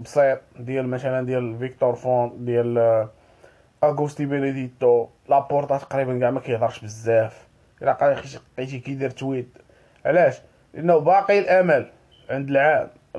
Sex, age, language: male, 20-39, Arabic